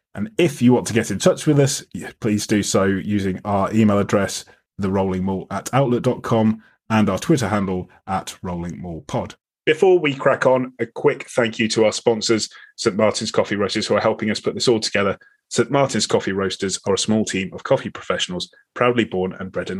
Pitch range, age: 100-120 Hz, 30-49